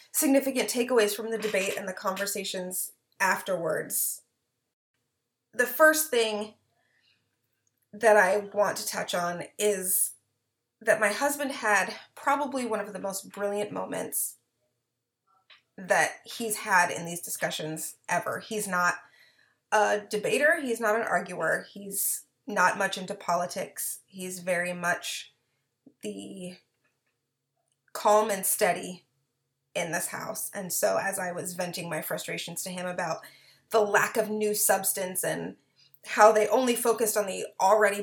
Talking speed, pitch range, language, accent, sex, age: 135 wpm, 180-220 Hz, English, American, female, 30-49